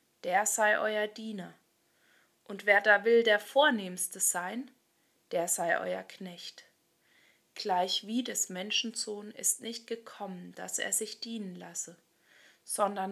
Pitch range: 185-240 Hz